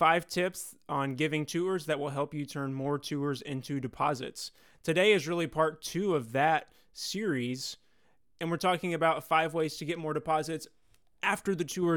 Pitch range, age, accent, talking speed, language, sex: 140-165 Hz, 30-49, American, 175 wpm, English, male